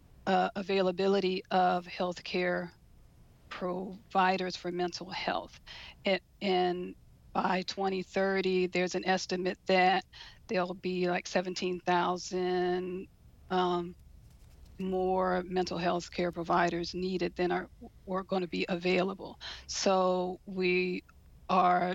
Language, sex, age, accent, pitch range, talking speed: English, female, 40-59, American, 180-190 Hz, 100 wpm